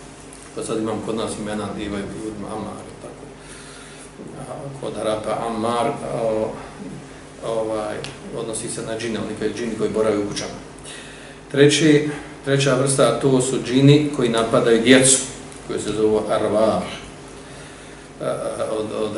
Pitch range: 110-140 Hz